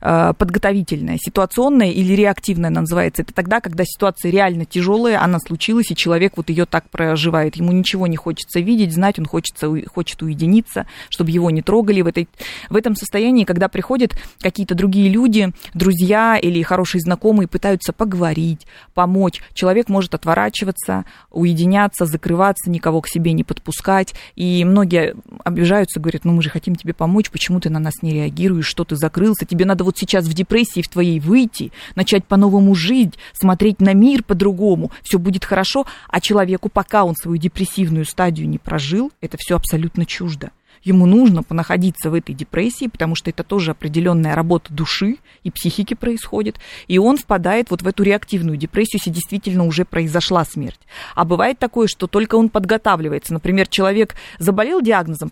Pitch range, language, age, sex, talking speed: 170-205 Hz, Russian, 20-39, female, 165 wpm